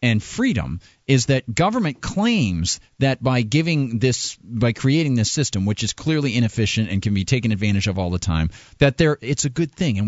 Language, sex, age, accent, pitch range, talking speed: English, male, 40-59, American, 110-150 Hz, 210 wpm